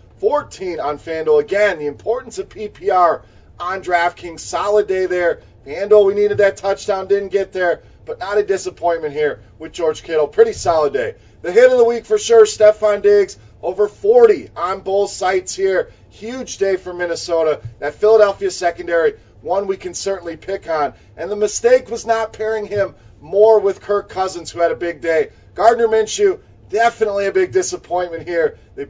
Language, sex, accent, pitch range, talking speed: English, male, American, 170-235 Hz, 175 wpm